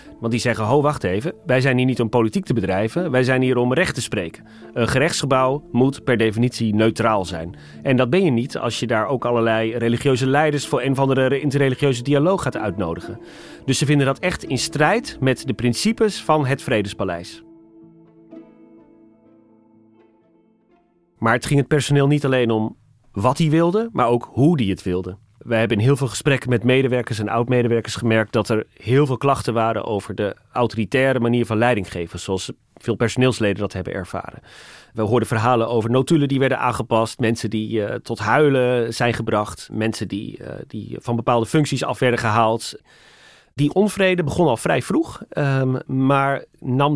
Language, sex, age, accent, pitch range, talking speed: Dutch, male, 30-49, Dutch, 110-140 Hz, 180 wpm